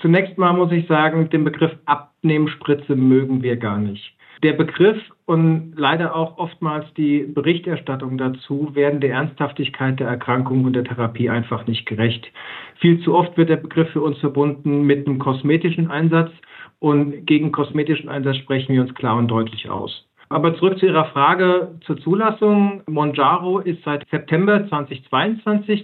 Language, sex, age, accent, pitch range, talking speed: German, male, 50-69, German, 135-165 Hz, 160 wpm